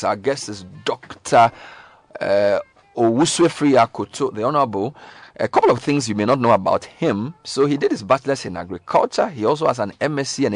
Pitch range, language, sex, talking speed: 100-125 Hz, English, male, 180 wpm